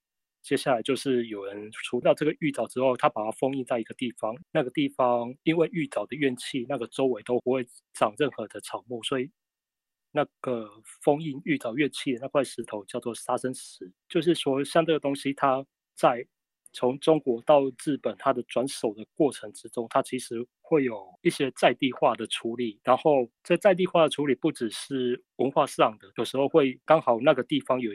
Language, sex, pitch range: Chinese, male, 120-140 Hz